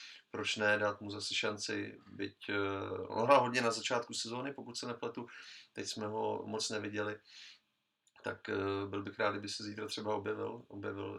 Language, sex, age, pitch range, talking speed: Slovak, male, 30-49, 100-110 Hz, 165 wpm